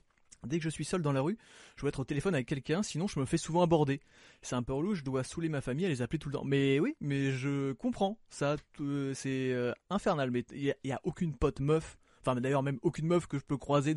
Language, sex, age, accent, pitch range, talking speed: French, male, 20-39, French, 120-155 Hz, 265 wpm